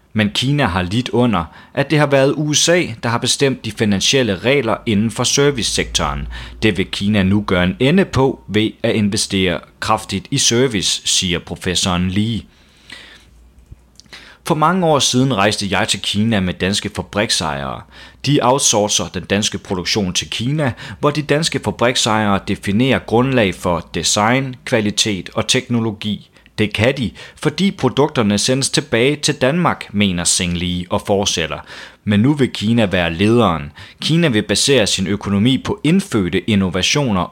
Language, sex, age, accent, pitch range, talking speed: Danish, male, 30-49, native, 95-130 Hz, 150 wpm